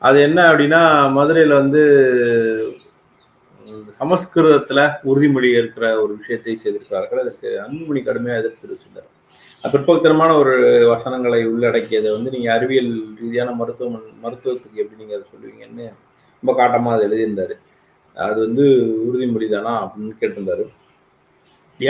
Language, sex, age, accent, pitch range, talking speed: Tamil, male, 30-49, native, 120-160 Hz, 115 wpm